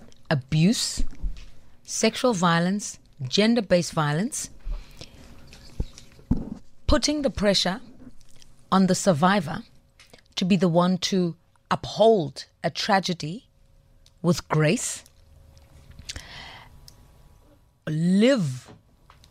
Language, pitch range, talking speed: English, 140-195 Hz, 70 wpm